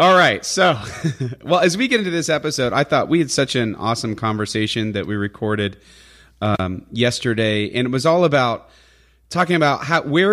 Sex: male